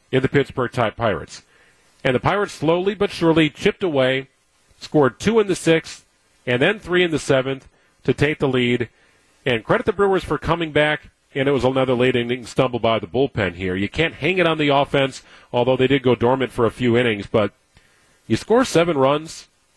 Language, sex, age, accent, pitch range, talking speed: English, male, 40-59, American, 125-155 Hz, 205 wpm